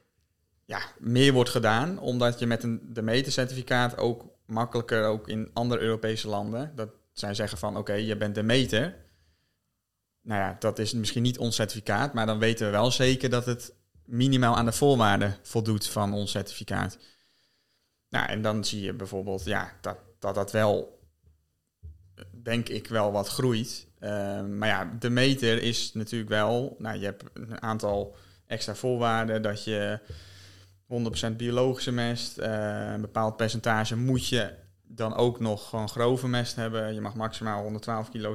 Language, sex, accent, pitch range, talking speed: Dutch, male, Dutch, 100-120 Hz, 165 wpm